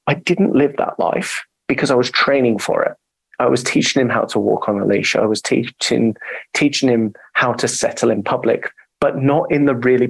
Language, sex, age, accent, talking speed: English, male, 30-49, British, 215 wpm